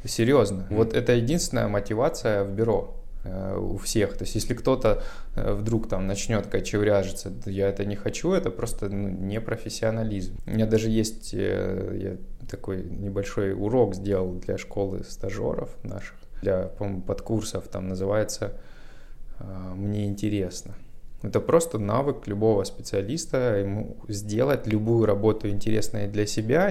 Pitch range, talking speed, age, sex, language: 95-110 Hz, 135 wpm, 20-39, male, Russian